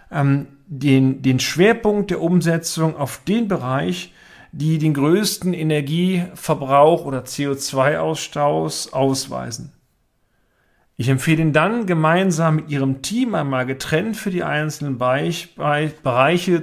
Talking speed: 105 wpm